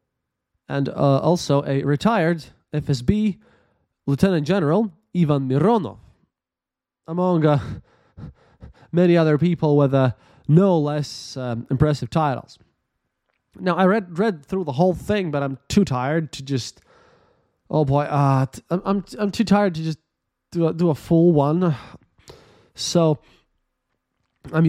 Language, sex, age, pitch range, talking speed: English, male, 20-39, 135-180 Hz, 135 wpm